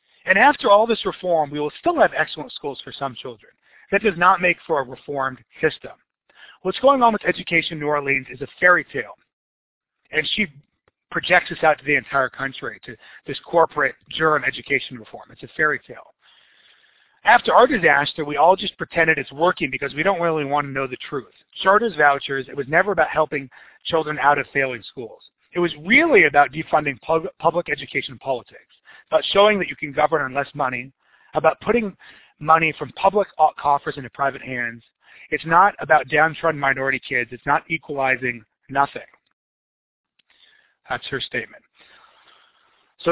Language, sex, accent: English, male, American